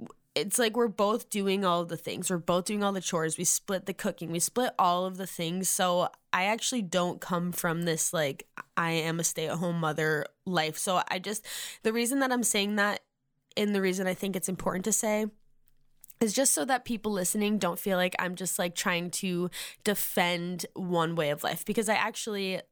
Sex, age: female, 10-29